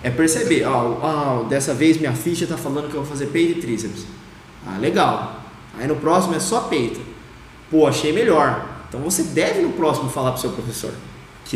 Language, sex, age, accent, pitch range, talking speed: Portuguese, male, 20-39, Brazilian, 120-160 Hz, 200 wpm